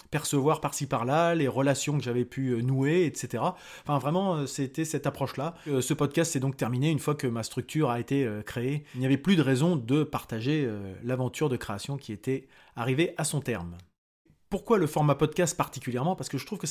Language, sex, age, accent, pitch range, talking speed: French, male, 30-49, French, 125-160 Hz, 200 wpm